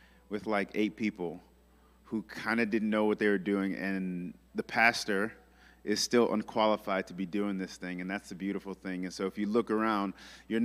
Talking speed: 205 wpm